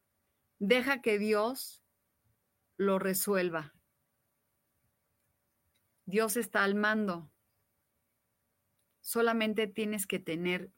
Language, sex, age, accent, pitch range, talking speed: Spanish, female, 30-49, Mexican, 165-220 Hz, 70 wpm